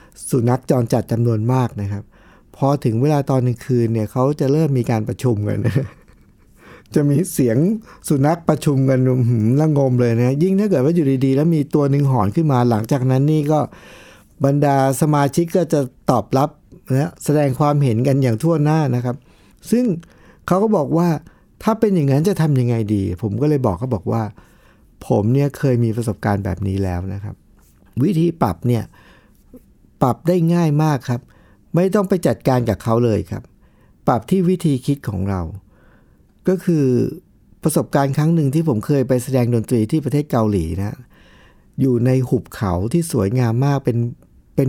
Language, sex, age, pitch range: Thai, male, 60-79, 115-150 Hz